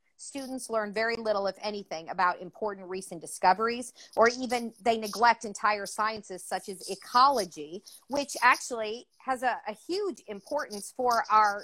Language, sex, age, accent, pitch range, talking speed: English, female, 40-59, American, 195-240 Hz, 145 wpm